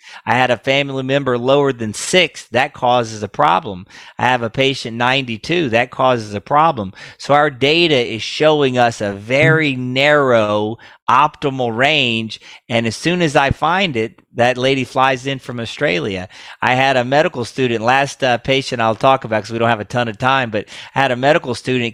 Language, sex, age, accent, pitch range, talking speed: English, male, 40-59, American, 115-140 Hz, 190 wpm